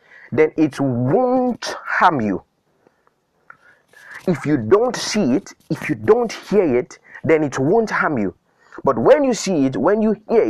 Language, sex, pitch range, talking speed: English, male, 140-205 Hz, 160 wpm